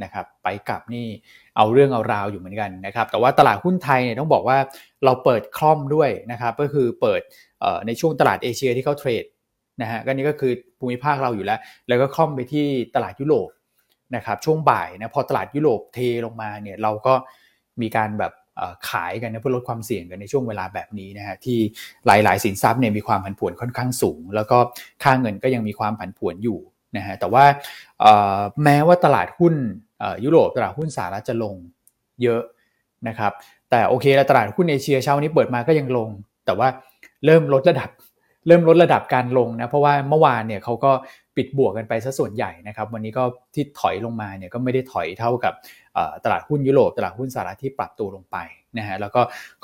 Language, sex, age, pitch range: Thai, male, 20-39, 110-145 Hz